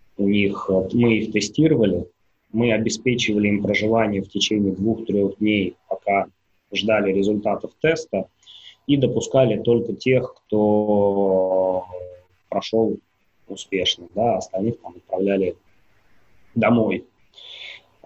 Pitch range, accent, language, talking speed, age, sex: 95-115 Hz, native, Russian, 85 wpm, 20-39, male